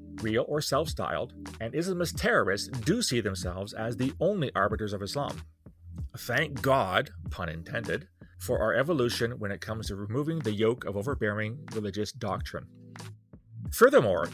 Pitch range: 95-120 Hz